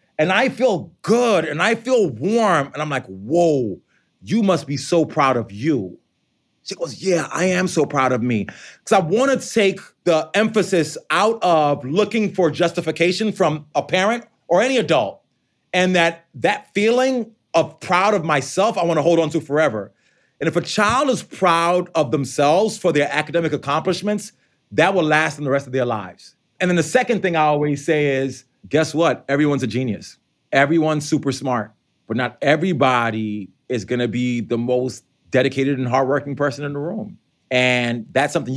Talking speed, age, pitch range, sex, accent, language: 180 wpm, 30-49, 135-180 Hz, male, American, English